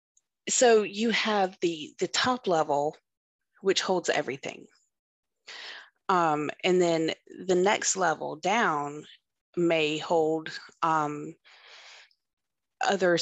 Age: 30-49